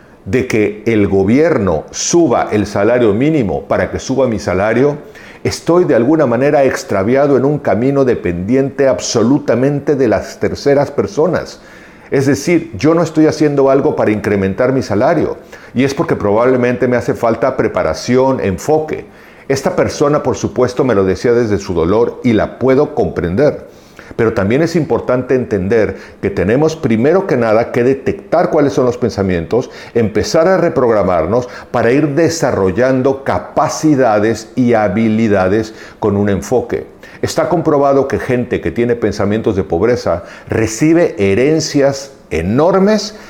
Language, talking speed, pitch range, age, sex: Spanish, 140 wpm, 105-145 Hz, 50-69, male